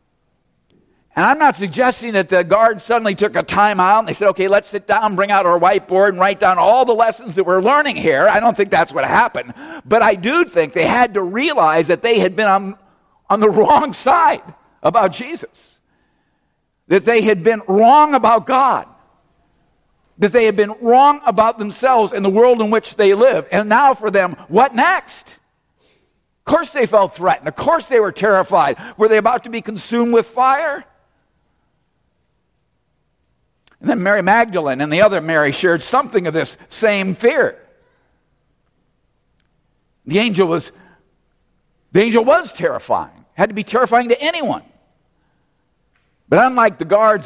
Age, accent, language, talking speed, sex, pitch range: 50-69, American, English, 170 wpm, male, 195-240 Hz